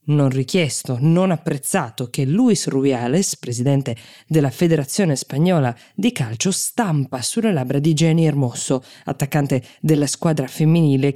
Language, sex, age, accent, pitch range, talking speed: Italian, female, 20-39, native, 135-170 Hz, 125 wpm